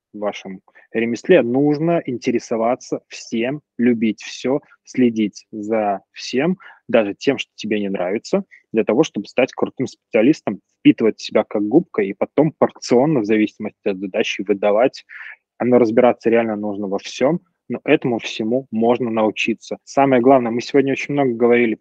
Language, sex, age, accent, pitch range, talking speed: Russian, male, 20-39, native, 105-130 Hz, 145 wpm